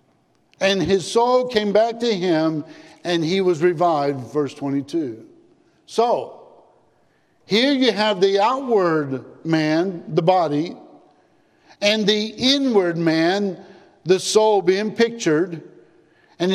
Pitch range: 160-215 Hz